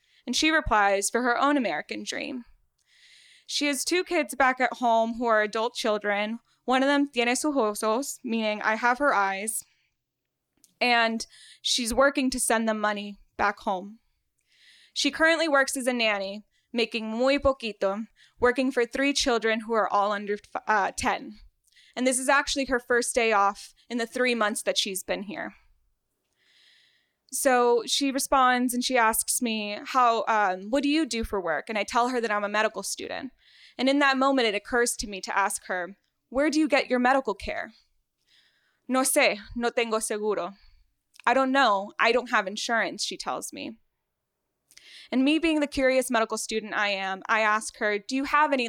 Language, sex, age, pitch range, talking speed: English, female, 10-29, 215-270 Hz, 180 wpm